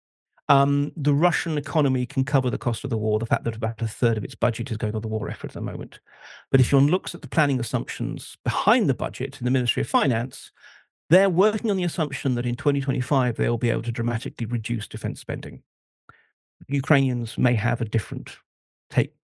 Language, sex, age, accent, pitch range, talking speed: Finnish, male, 40-59, British, 120-150 Hz, 210 wpm